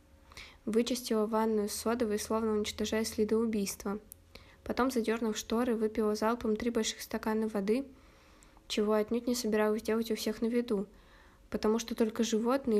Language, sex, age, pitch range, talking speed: Russian, female, 20-39, 210-235 Hz, 140 wpm